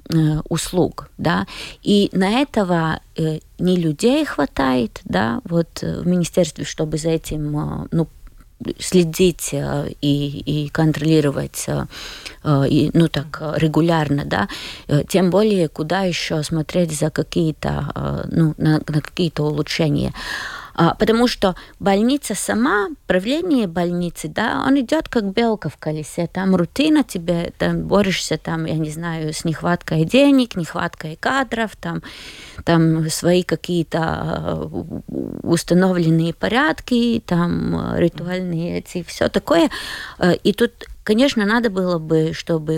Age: 20-39